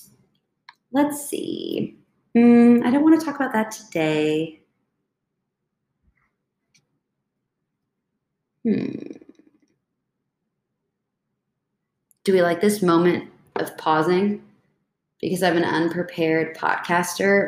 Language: English